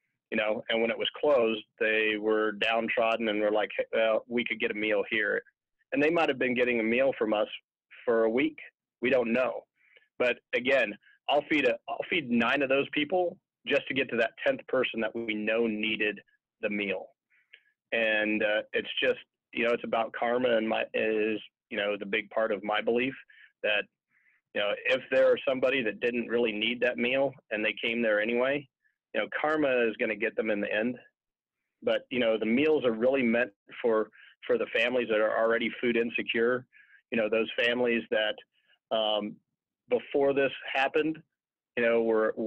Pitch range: 110-135 Hz